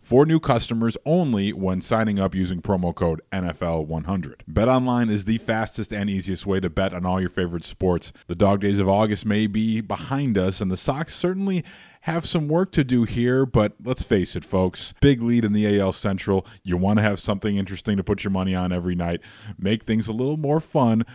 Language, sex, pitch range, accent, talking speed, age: English, male, 95-125 Hz, American, 215 wpm, 30-49